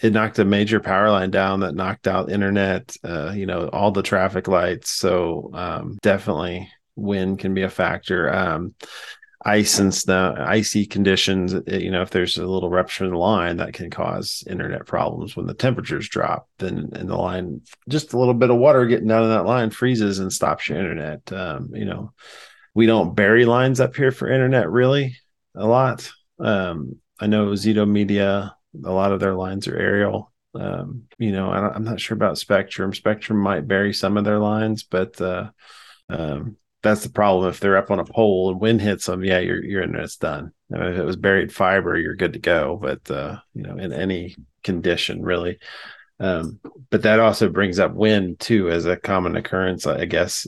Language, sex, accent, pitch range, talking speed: English, male, American, 95-110 Hz, 200 wpm